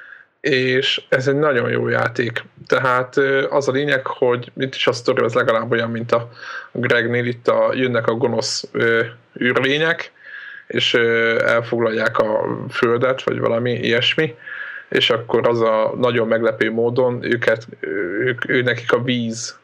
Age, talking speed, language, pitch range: 20-39, 140 wpm, Hungarian, 115-130 Hz